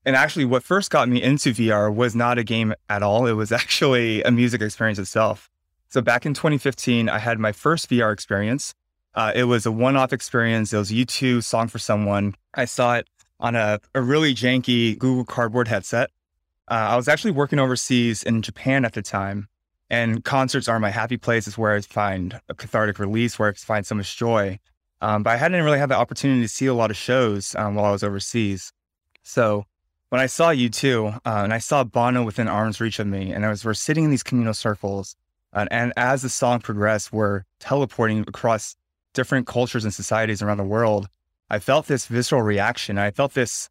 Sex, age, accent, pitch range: male, 20-39, American, 105-125 Hz